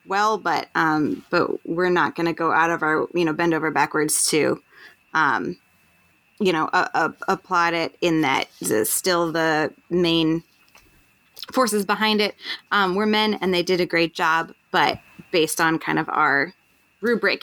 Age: 20-39